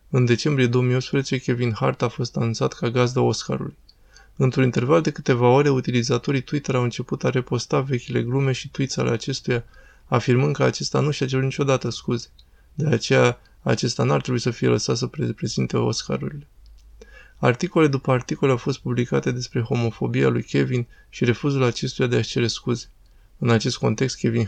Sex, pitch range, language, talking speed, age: male, 115-135 Hz, Romanian, 165 wpm, 20-39